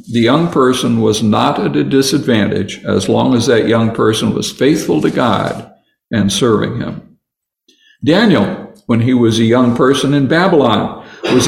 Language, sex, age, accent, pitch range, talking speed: English, male, 60-79, American, 120-155 Hz, 160 wpm